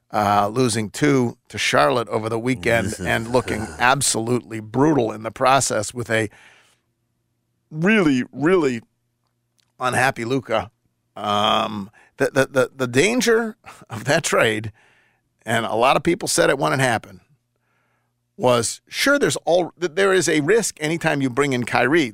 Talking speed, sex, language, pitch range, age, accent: 145 wpm, male, English, 115-140 Hz, 50-69, American